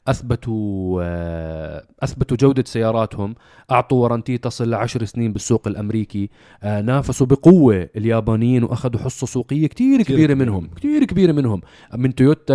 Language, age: Arabic, 30-49